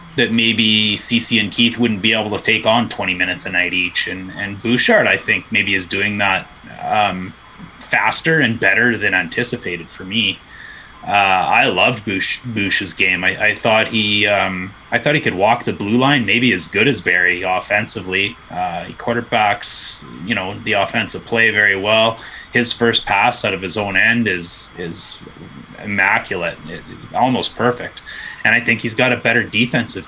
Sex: male